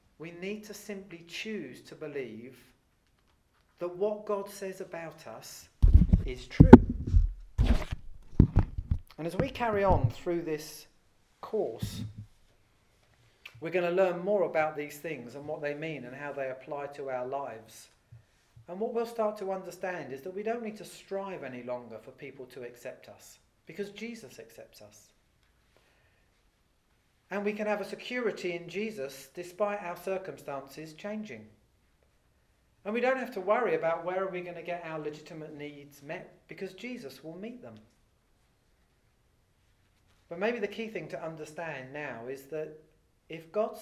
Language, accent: English, British